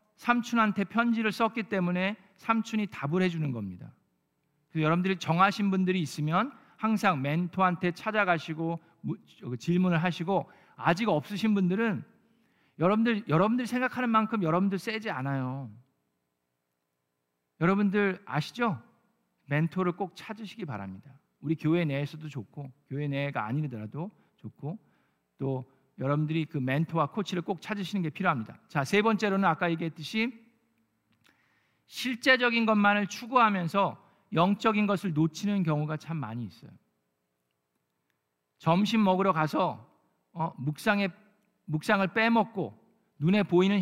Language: Korean